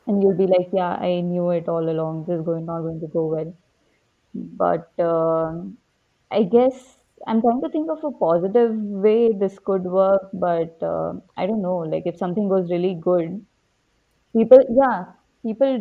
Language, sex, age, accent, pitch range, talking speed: English, female, 20-39, Indian, 170-205 Hz, 180 wpm